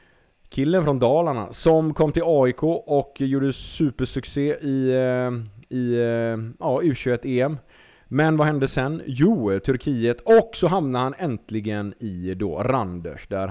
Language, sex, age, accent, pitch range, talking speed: Swedish, male, 30-49, Norwegian, 105-135 Hz, 135 wpm